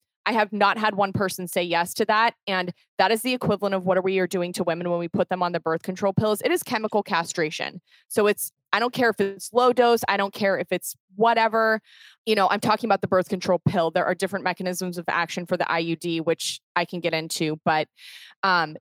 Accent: American